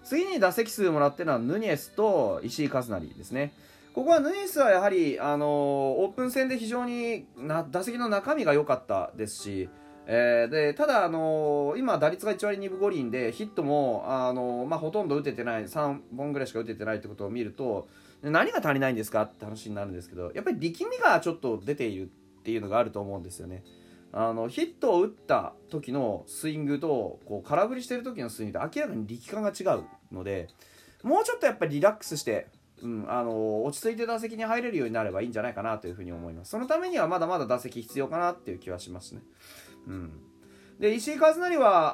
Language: Japanese